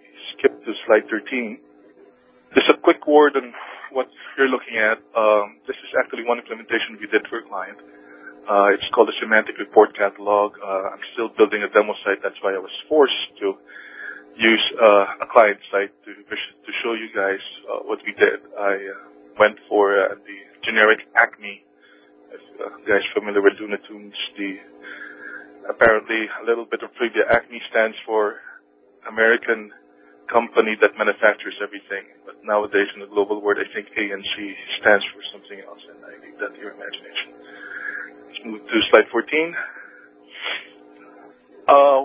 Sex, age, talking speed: male, 20-39, 165 wpm